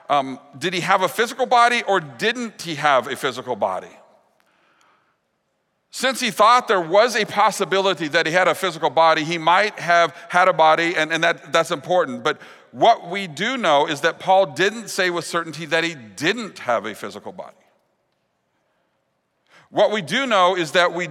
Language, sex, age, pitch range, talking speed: English, male, 50-69, 150-190 Hz, 180 wpm